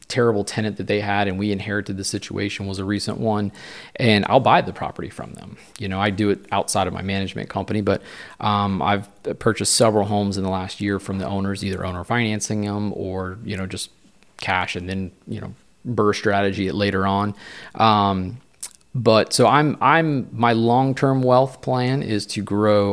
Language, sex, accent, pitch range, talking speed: English, male, American, 95-105 Hz, 190 wpm